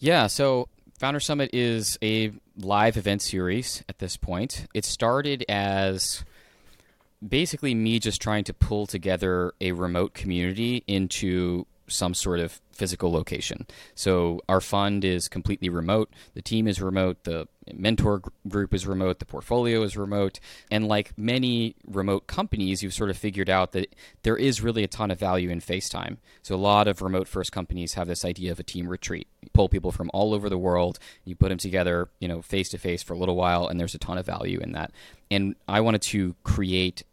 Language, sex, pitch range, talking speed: English, male, 90-105 Hz, 190 wpm